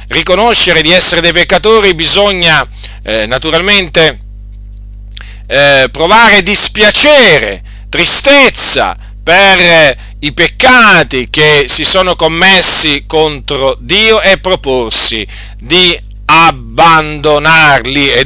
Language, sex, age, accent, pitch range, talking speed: Italian, male, 40-59, native, 130-185 Hz, 90 wpm